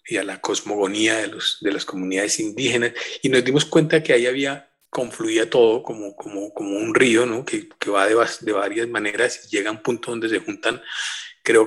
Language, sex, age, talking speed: Spanish, male, 40-59, 210 wpm